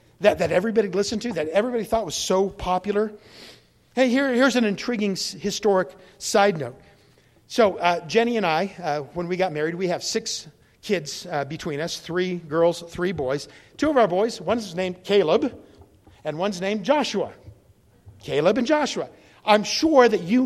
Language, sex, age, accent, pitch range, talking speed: English, male, 50-69, American, 165-225 Hz, 165 wpm